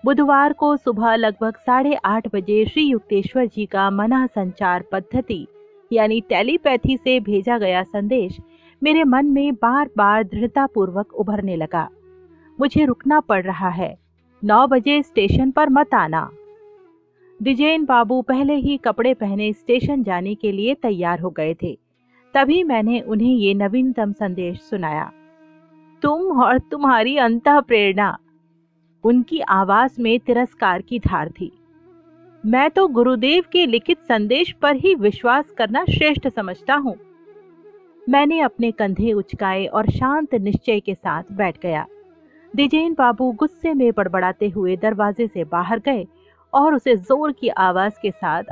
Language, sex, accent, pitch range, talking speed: Hindi, female, native, 200-285 Hz, 115 wpm